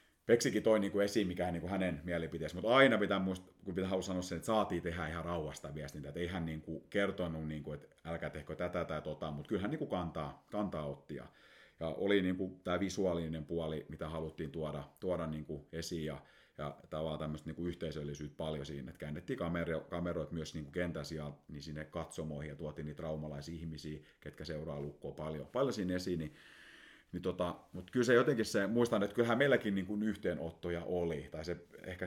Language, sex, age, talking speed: Finnish, male, 30-49, 185 wpm